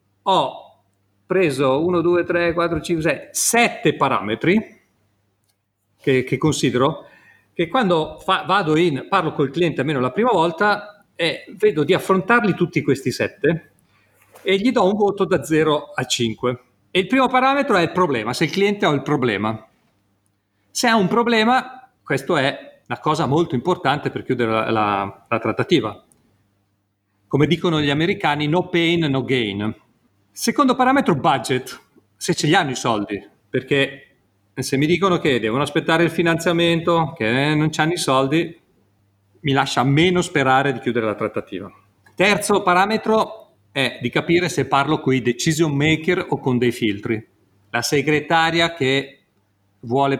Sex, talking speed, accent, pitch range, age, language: male, 155 wpm, native, 120-175 Hz, 40-59, Italian